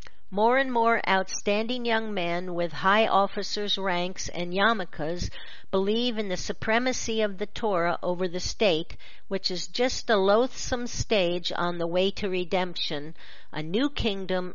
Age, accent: 50-69, American